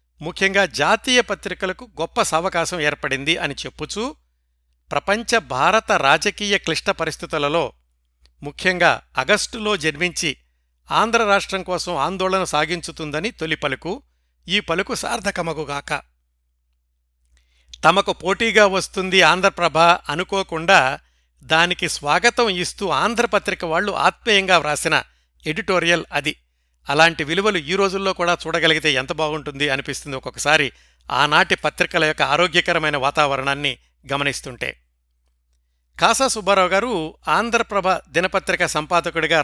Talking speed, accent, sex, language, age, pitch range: 90 wpm, native, male, Telugu, 60-79, 135-190 Hz